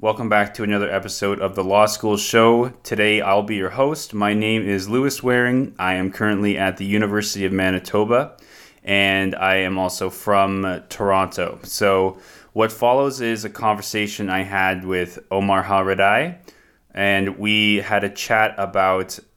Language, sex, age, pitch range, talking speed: English, male, 20-39, 95-110 Hz, 160 wpm